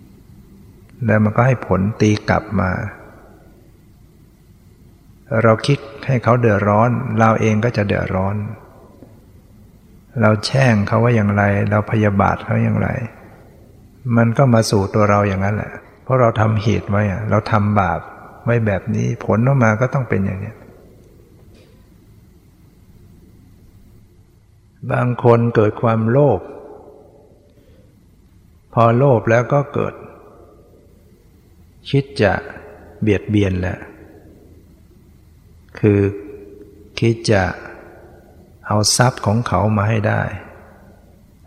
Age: 60-79